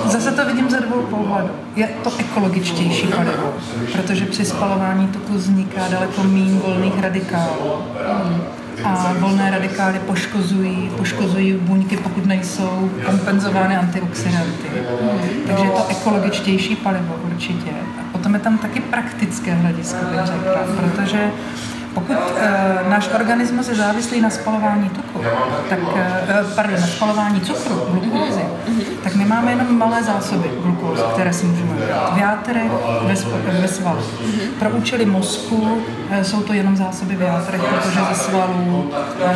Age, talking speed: 40-59, 135 wpm